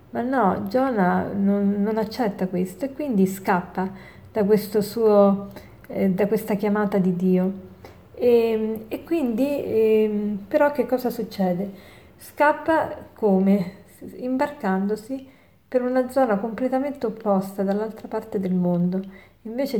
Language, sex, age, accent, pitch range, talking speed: Italian, female, 40-59, native, 190-220 Hz, 120 wpm